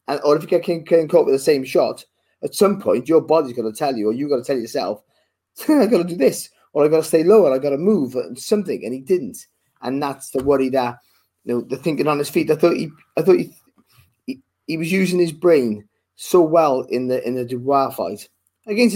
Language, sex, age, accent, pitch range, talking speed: English, male, 20-39, British, 125-155 Hz, 250 wpm